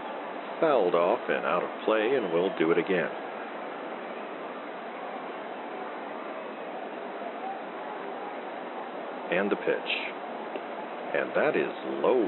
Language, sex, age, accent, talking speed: English, male, 50-69, American, 90 wpm